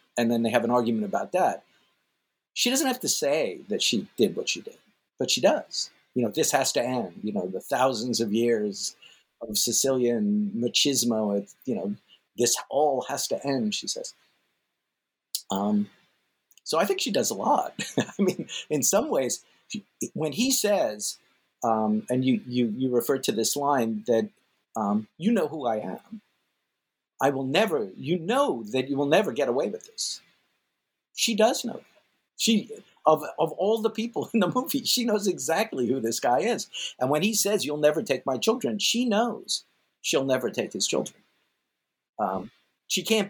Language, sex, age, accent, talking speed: English, male, 50-69, American, 180 wpm